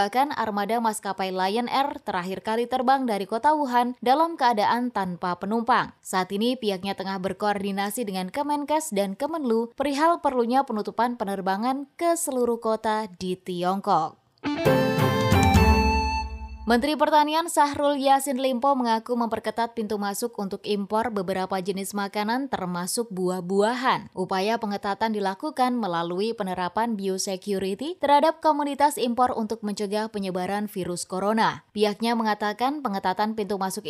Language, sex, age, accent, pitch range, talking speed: Indonesian, female, 20-39, native, 190-255 Hz, 120 wpm